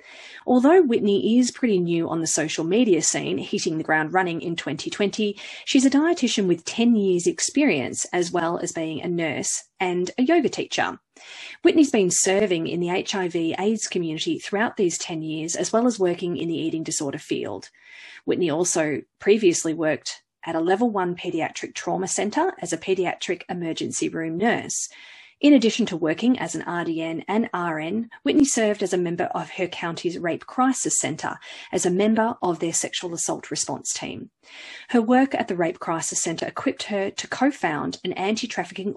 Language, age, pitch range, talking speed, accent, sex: English, 30-49, 170-240 Hz, 175 wpm, Australian, female